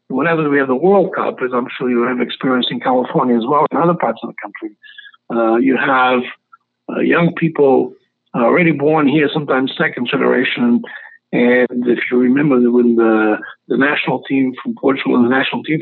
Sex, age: male, 60-79